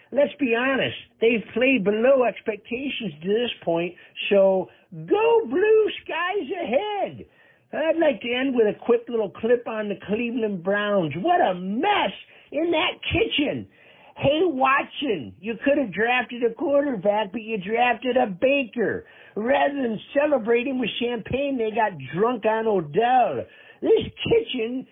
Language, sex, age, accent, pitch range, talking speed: English, male, 50-69, American, 205-275 Hz, 140 wpm